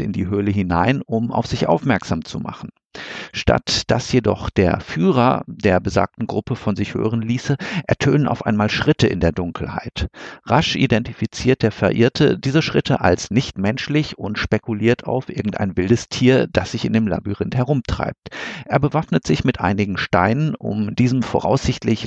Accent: German